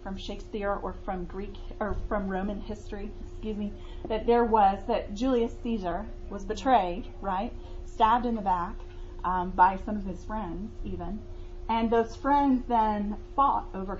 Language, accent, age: English, American, 30-49